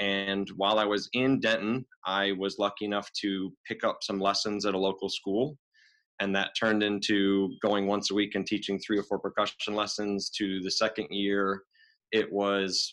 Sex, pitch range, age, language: male, 100-110 Hz, 30-49, English